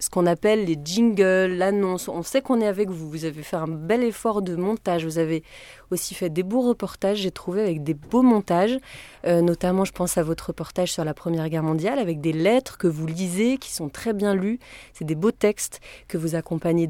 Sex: female